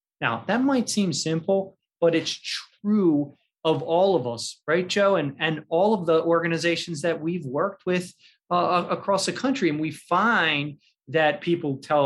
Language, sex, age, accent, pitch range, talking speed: English, male, 30-49, American, 125-160 Hz, 170 wpm